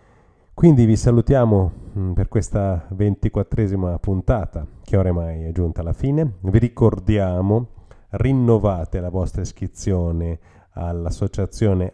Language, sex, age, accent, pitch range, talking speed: Italian, male, 30-49, native, 90-105 Hz, 100 wpm